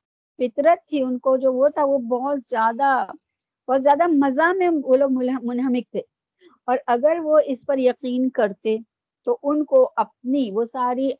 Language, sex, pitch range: Urdu, female, 215-280 Hz